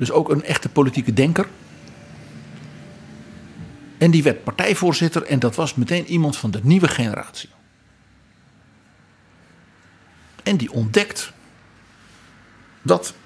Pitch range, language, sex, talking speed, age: 115-160 Hz, Dutch, male, 105 wpm, 50-69